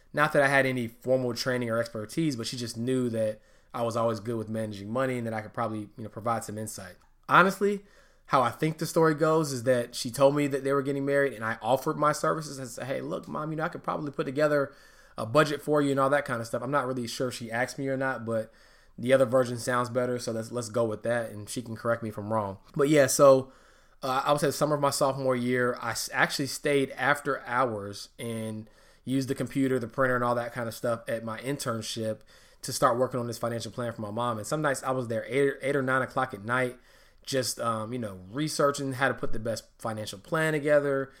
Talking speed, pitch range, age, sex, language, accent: 255 wpm, 115-140 Hz, 20-39, male, English, American